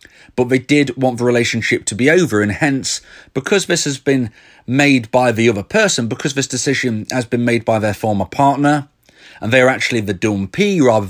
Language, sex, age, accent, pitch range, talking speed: English, male, 30-49, British, 115-150 Hz, 195 wpm